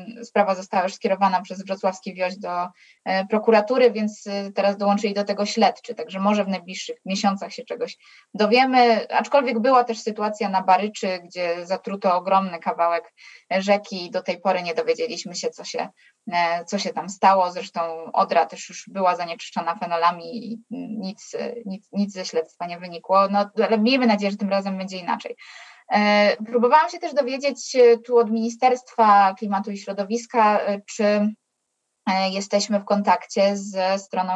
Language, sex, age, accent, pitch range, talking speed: Polish, female, 20-39, native, 185-225 Hz, 145 wpm